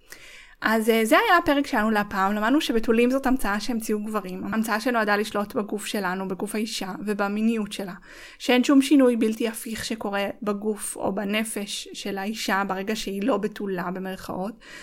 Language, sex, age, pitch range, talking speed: Hebrew, female, 20-39, 210-260 Hz, 155 wpm